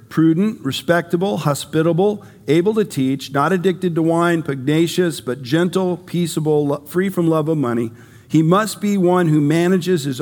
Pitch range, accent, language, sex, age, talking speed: 135-185 Hz, American, English, male, 50-69, 155 wpm